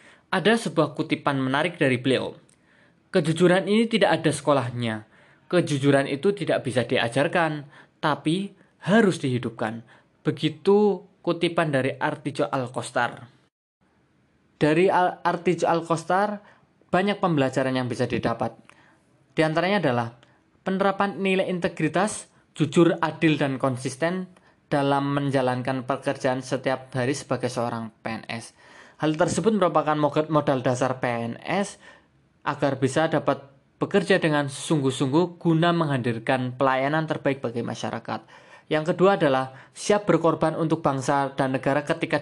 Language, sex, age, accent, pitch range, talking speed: Indonesian, male, 20-39, native, 135-175 Hz, 110 wpm